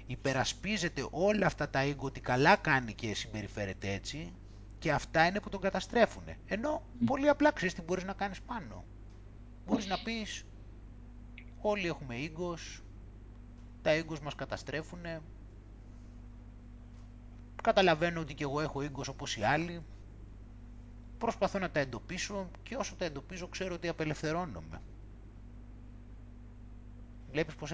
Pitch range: 110-175 Hz